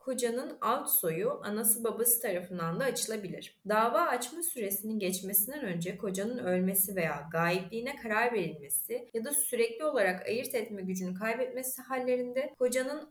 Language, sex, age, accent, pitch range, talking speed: Turkish, female, 30-49, native, 190-255 Hz, 135 wpm